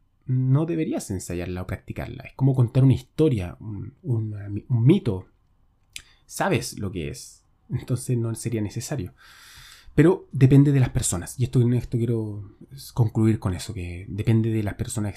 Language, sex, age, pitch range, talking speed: Spanish, male, 20-39, 105-135 Hz, 155 wpm